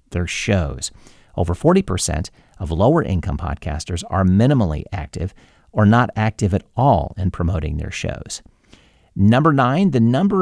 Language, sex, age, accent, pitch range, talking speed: English, male, 50-69, American, 85-115 Hz, 140 wpm